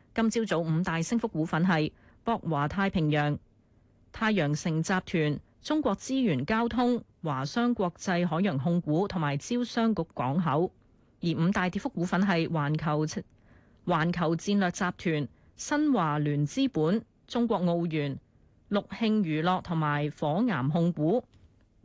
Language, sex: Chinese, female